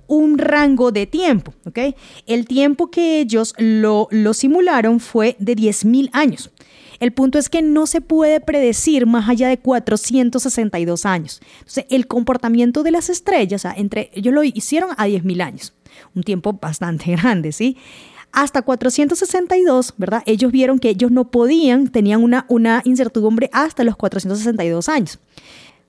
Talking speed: 150 wpm